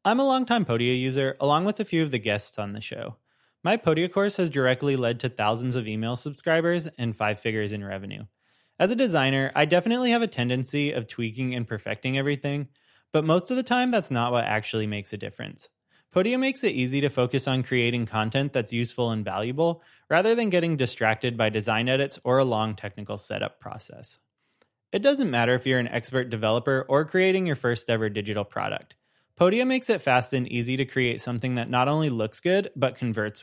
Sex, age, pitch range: male, 20-39, 115-165 Hz